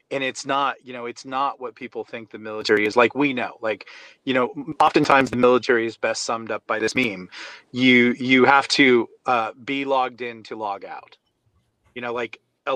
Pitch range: 120-150 Hz